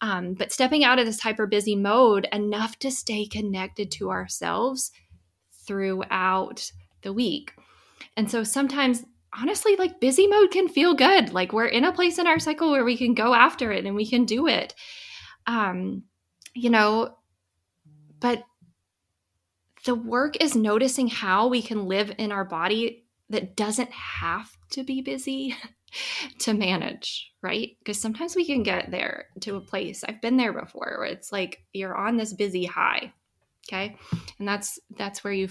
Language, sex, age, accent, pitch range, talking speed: English, female, 20-39, American, 190-255 Hz, 165 wpm